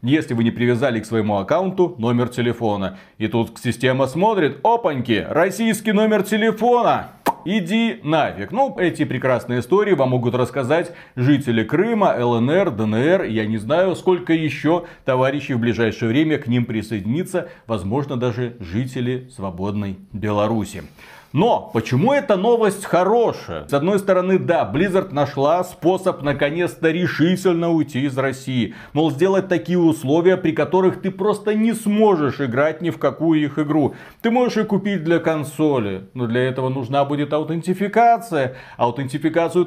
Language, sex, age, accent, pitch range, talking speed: Russian, male, 40-59, native, 125-185 Hz, 140 wpm